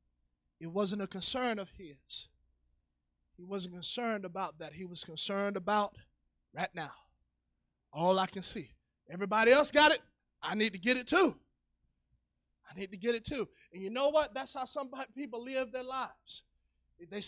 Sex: male